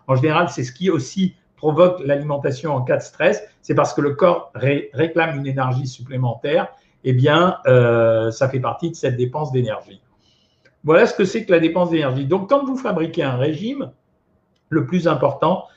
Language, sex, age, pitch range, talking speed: French, male, 50-69, 135-175 Hz, 185 wpm